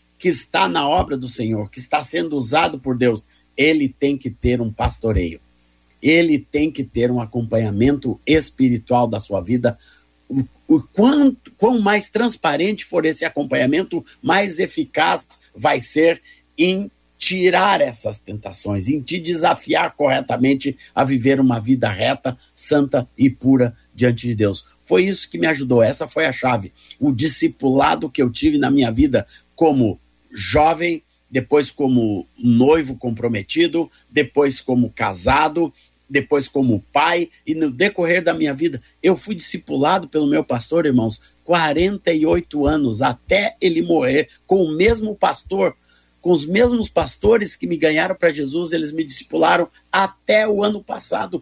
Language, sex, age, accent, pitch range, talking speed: Portuguese, male, 50-69, Brazilian, 125-180 Hz, 150 wpm